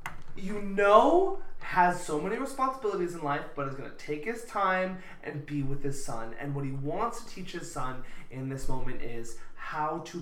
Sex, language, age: male, English, 20-39